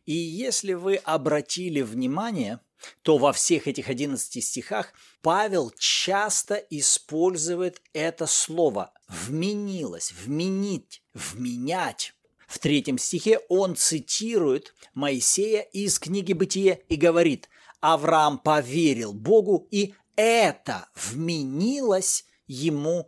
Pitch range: 155-215 Hz